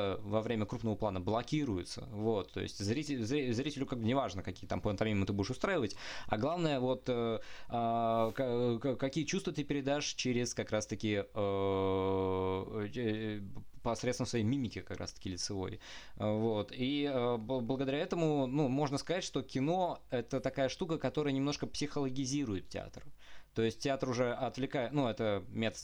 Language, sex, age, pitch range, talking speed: Russian, male, 20-39, 105-140 Hz, 140 wpm